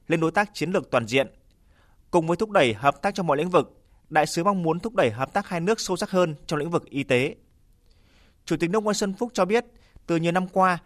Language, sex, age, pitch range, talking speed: Vietnamese, male, 20-39, 140-185 Hz, 260 wpm